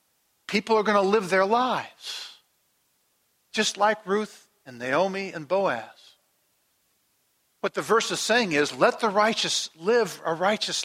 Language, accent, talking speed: English, American, 145 wpm